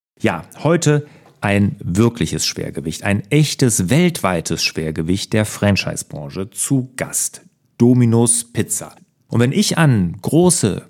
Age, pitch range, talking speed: 40-59, 95-135 Hz, 110 wpm